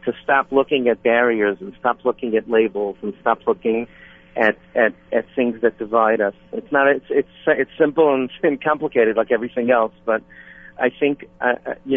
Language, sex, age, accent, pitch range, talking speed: English, male, 50-69, American, 110-135 Hz, 180 wpm